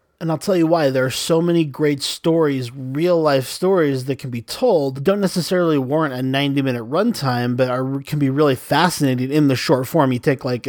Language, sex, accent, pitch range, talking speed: English, male, American, 130-160 Hz, 220 wpm